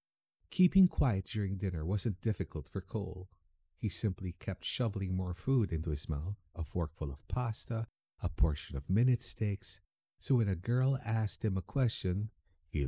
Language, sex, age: English, male, 50-69